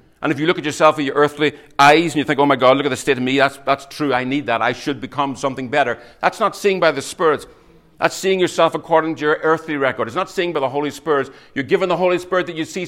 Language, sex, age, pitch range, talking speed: English, male, 60-79, 125-160 Hz, 290 wpm